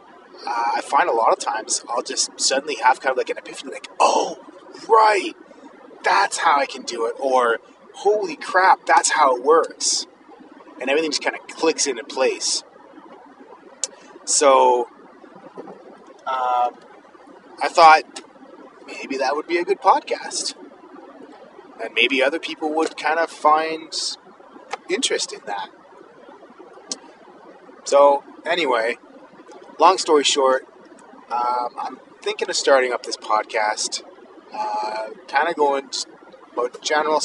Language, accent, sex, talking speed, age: English, American, male, 130 wpm, 30-49